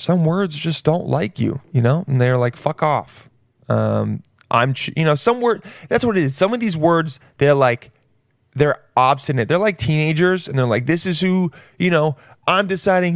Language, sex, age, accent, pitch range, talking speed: English, male, 20-39, American, 125-170 Hz, 205 wpm